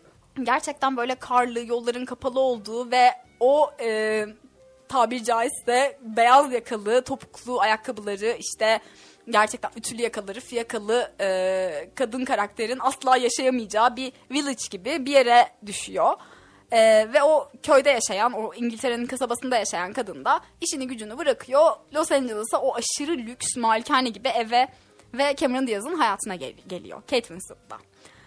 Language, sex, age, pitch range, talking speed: Turkish, female, 10-29, 230-300 Hz, 130 wpm